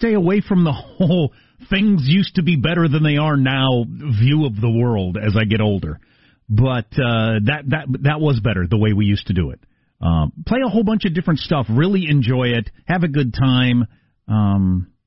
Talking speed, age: 205 wpm, 40-59